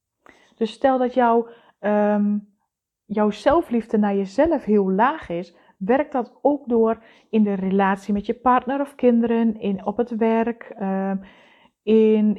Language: Dutch